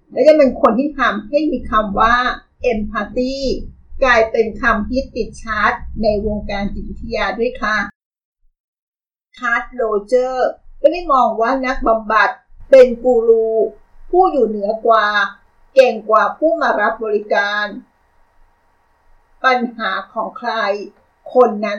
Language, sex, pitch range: Thai, female, 215-270 Hz